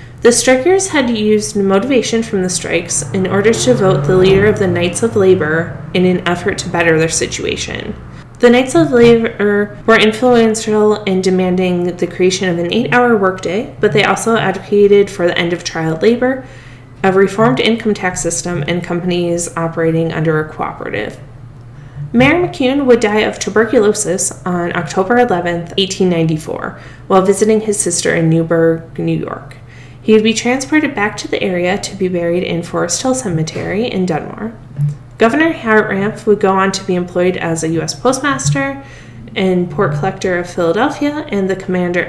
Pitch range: 165-220 Hz